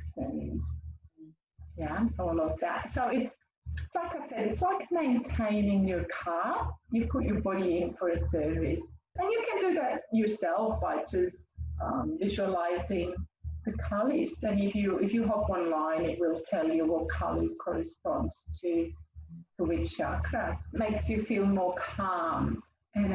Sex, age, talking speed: female, 30-49, 155 wpm